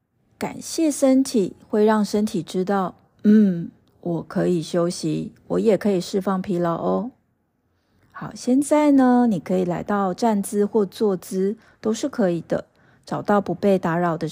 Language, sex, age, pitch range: Chinese, female, 30-49, 180-230 Hz